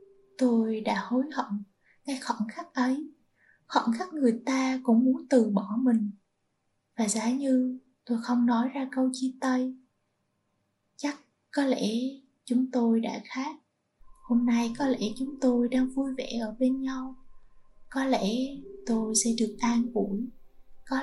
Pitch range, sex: 215-255 Hz, female